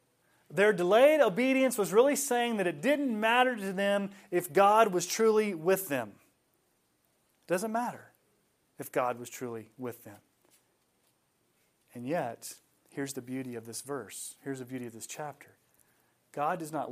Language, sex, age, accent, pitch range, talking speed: English, male, 30-49, American, 130-200 Hz, 155 wpm